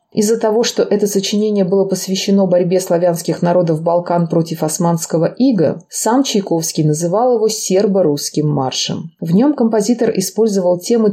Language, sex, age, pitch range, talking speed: Russian, female, 30-49, 155-210 Hz, 135 wpm